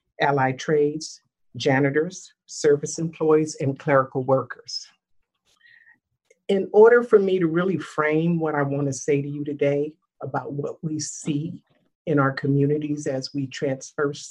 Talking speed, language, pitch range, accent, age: 135 wpm, English, 145-185 Hz, American, 50-69